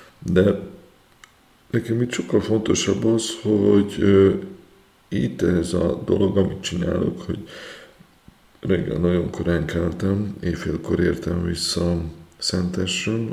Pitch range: 85-105 Hz